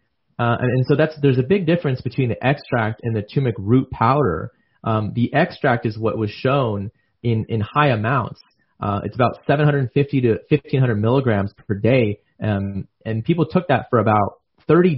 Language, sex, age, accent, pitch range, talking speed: English, male, 30-49, American, 105-135 Hz, 180 wpm